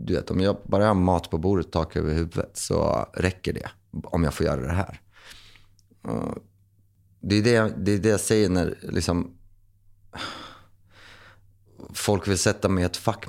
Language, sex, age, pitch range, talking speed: Swedish, male, 30-49, 85-100 Hz, 170 wpm